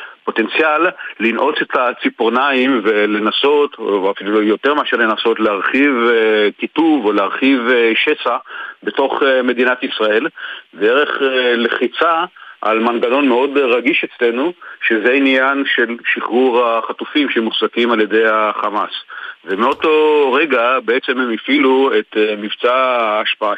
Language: Hebrew